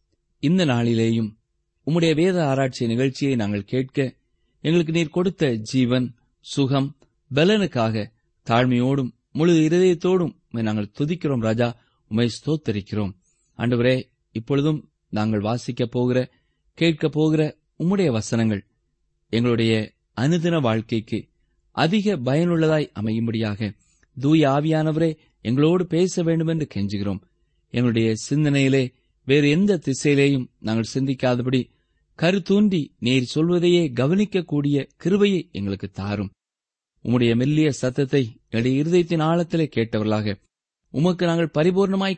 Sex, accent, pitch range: male, native, 115-155 Hz